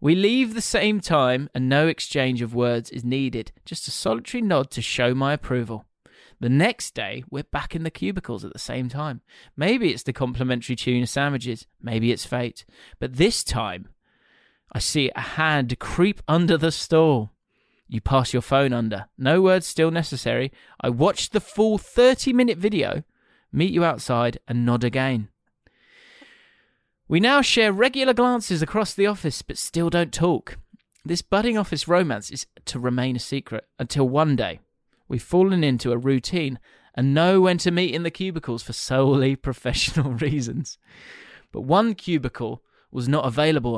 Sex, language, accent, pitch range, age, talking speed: male, English, British, 125-180 Hz, 30-49, 165 wpm